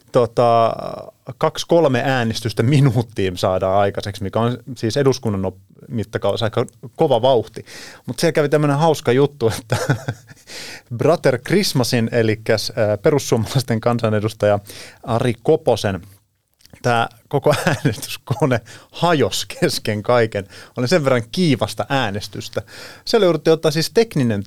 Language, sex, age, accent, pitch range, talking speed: Finnish, male, 30-49, native, 105-135 Hz, 110 wpm